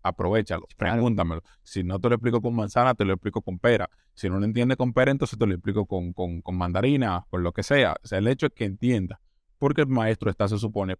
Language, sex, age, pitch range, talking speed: Spanish, male, 20-39, 95-120 Hz, 245 wpm